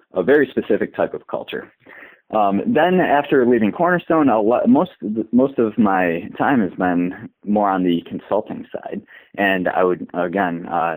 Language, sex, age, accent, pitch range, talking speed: English, male, 30-49, American, 90-115 Hz, 160 wpm